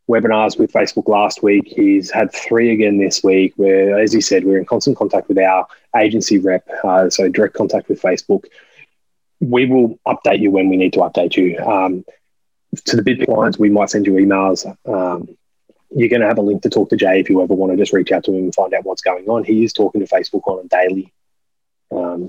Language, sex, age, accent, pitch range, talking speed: English, male, 20-39, Australian, 95-115 Hz, 230 wpm